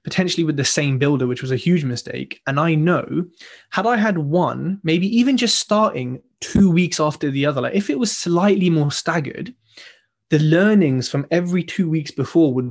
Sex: male